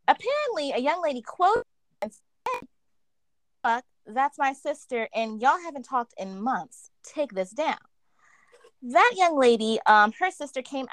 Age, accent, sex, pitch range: 20-39, American, female, 210-295 Hz